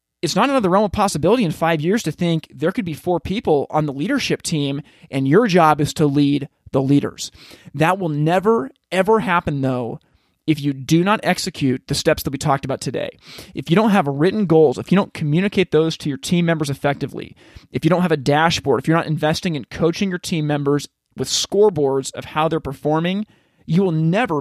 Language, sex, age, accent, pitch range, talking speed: English, male, 30-49, American, 145-180 Hz, 210 wpm